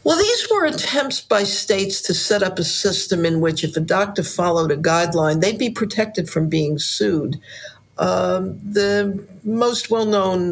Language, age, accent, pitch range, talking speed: English, 50-69, American, 155-205 Hz, 165 wpm